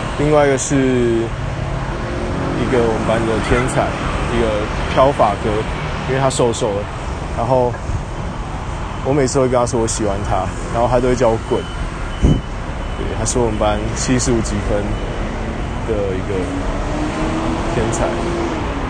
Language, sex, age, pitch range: Chinese, male, 20-39, 95-120 Hz